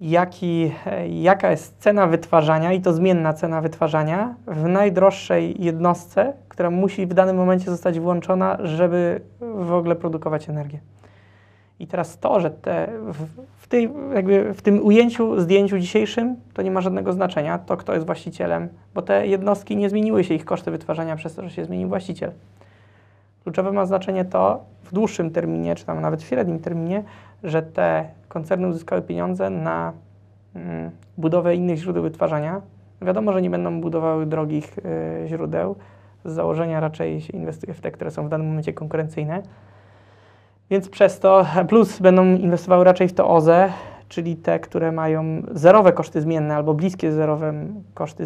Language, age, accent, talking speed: Polish, 20-39, native, 160 wpm